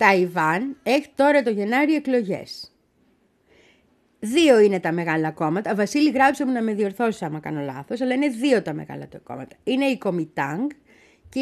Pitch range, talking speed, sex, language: 175-280 Hz, 160 wpm, female, Greek